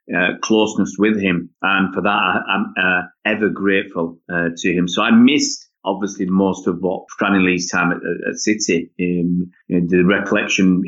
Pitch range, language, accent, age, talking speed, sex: 90-100 Hz, English, British, 30-49, 190 wpm, male